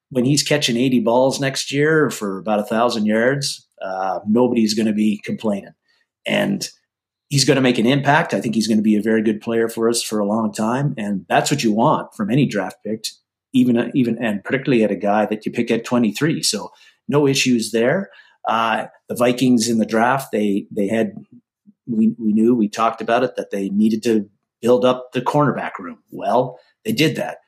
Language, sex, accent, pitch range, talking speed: English, male, American, 110-135 Hz, 205 wpm